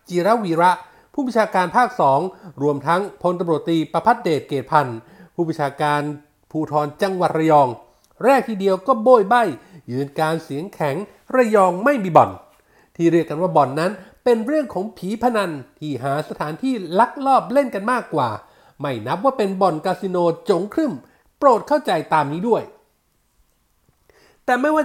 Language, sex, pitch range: Thai, male, 160-235 Hz